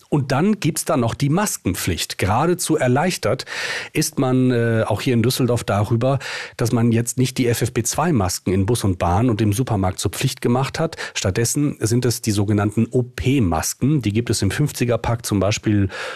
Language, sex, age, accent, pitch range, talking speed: German, male, 40-59, German, 105-130 Hz, 185 wpm